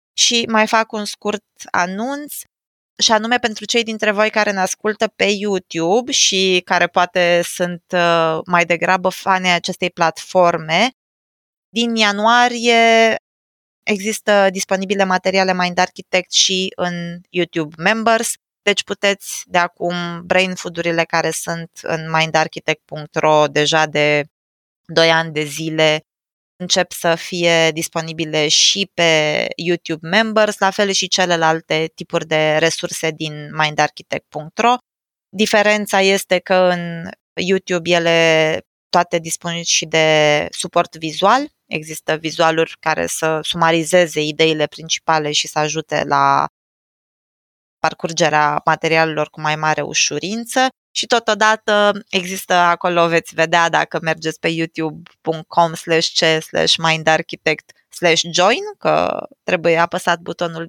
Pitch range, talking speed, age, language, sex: 160-195 Hz, 110 wpm, 20-39, Romanian, female